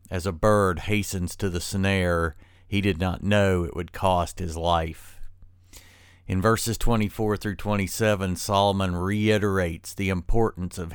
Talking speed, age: 135 wpm, 50-69